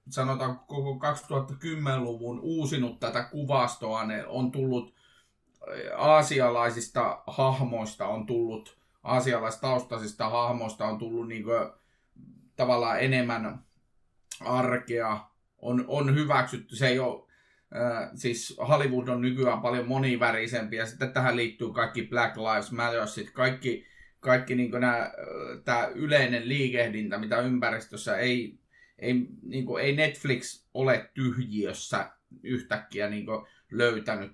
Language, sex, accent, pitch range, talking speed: Finnish, male, native, 115-135 Hz, 110 wpm